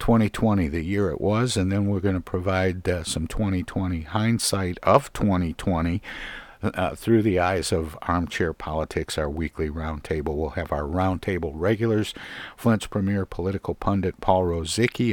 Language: English